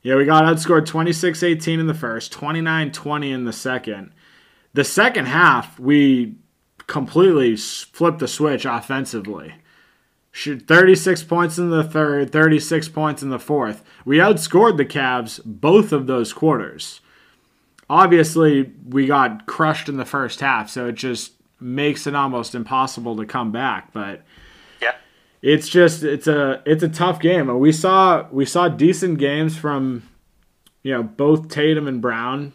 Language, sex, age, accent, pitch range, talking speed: English, male, 20-39, American, 125-160 Hz, 145 wpm